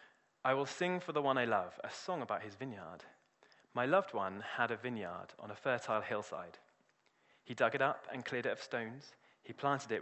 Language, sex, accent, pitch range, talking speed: English, male, British, 100-130 Hz, 210 wpm